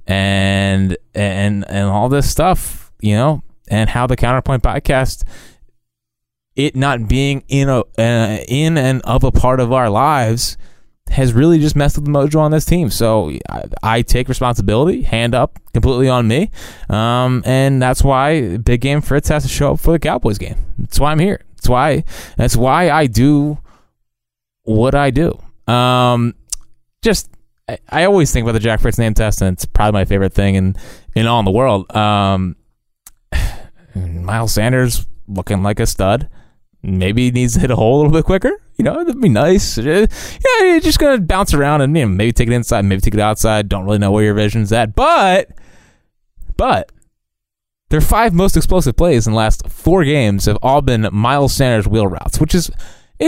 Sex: male